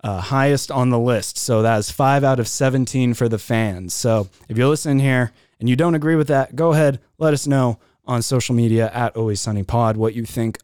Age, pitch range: 20-39, 115-145 Hz